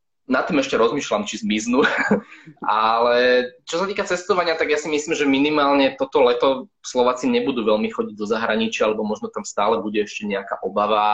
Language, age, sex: Slovak, 20-39, male